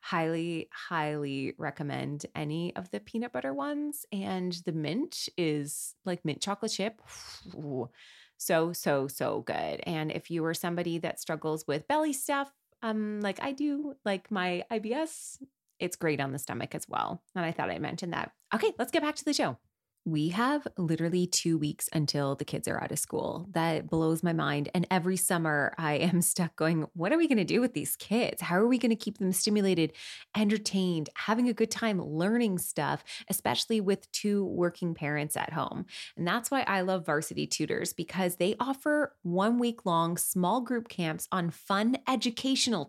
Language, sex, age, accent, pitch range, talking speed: English, female, 20-39, American, 160-225 Hz, 185 wpm